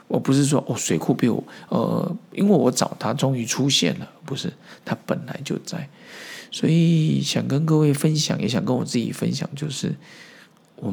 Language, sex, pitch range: Chinese, male, 120-165 Hz